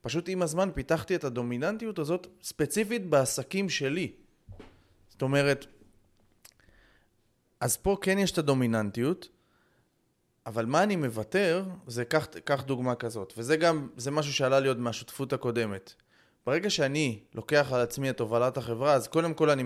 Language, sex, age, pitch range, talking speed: Hebrew, male, 20-39, 120-160 Hz, 145 wpm